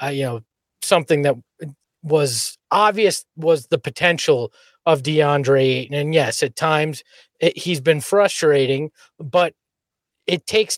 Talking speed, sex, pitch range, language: 120 wpm, male, 145-195 Hz, English